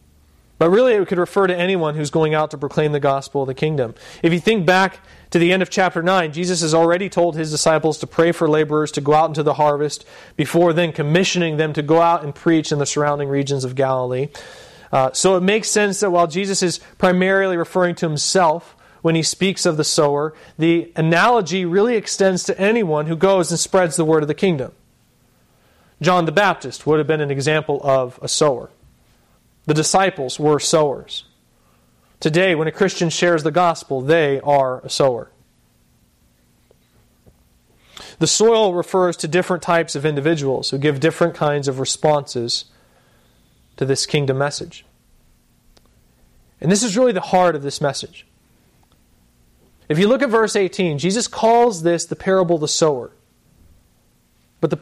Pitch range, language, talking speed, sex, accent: 145-180 Hz, English, 175 wpm, male, American